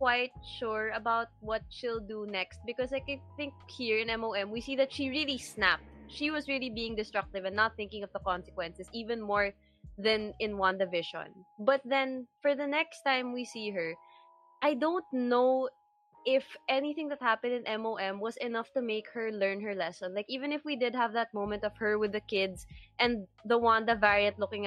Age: 20-39